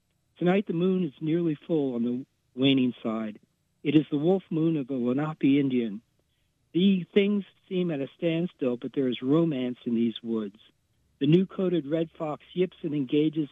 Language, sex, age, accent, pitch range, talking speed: English, male, 60-79, American, 135-170 Hz, 175 wpm